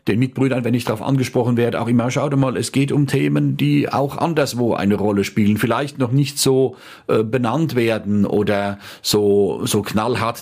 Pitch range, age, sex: 105-130 Hz, 40-59, male